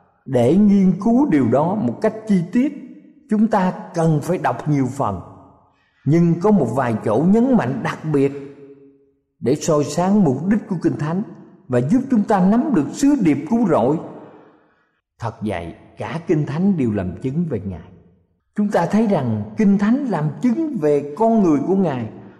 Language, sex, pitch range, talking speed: Vietnamese, male, 130-210 Hz, 175 wpm